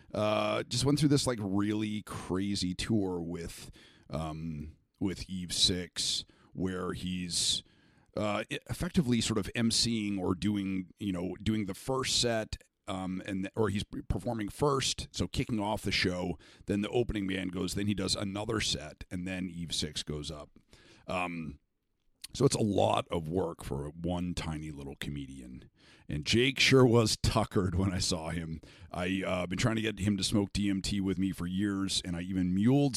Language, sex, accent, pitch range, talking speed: English, male, American, 85-110 Hz, 175 wpm